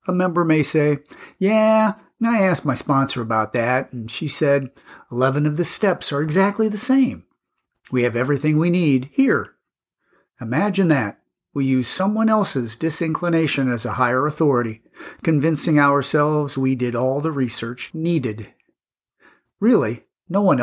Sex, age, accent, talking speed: male, 50-69, American, 145 wpm